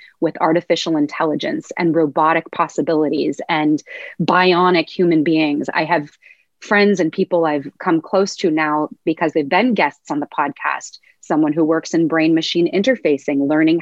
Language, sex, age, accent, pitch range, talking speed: English, female, 30-49, American, 160-200 Hz, 150 wpm